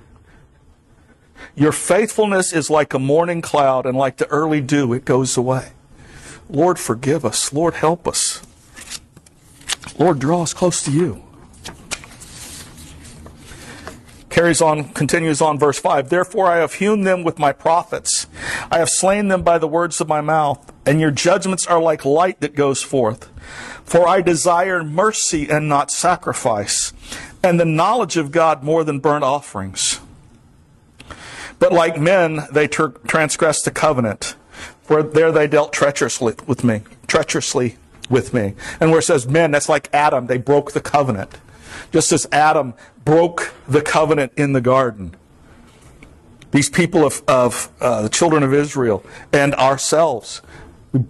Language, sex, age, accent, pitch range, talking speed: English, male, 50-69, American, 130-170 Hz, 150 wpm